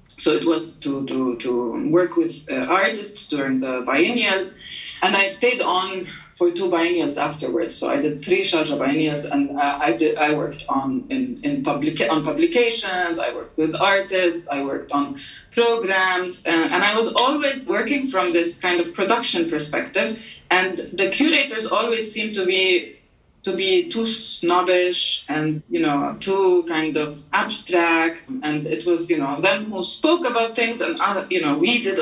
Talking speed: 175 wpm